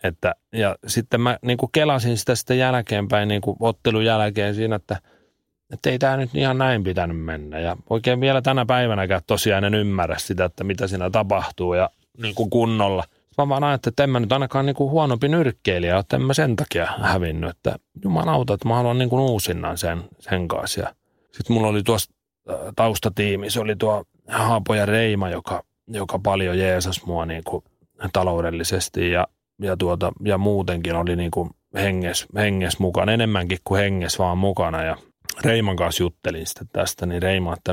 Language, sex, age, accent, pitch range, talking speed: Finnish, male, 30-49, native, 95-120 Hz, 180 wpm